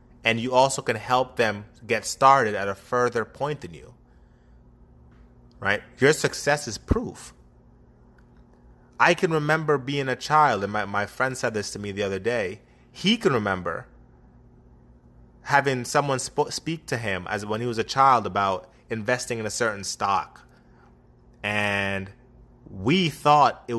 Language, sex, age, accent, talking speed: English, male, 30-49, American, 150 wpm